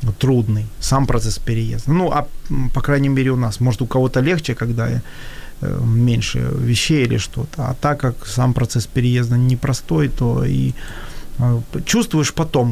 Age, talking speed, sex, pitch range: 30-49, 145 wpm, male, 115-145 Hz